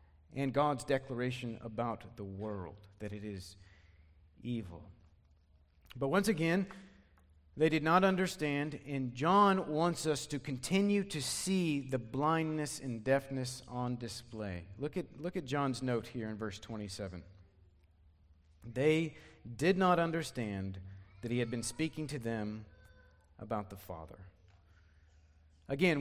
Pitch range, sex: 100-160 Hz, male